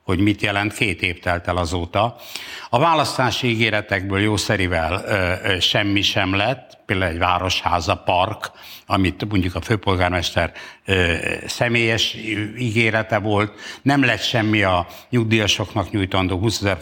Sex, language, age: male, Hungarian, 60-79